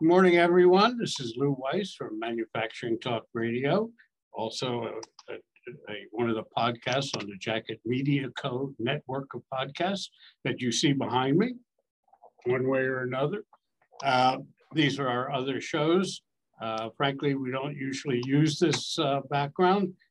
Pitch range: 120-160 Hz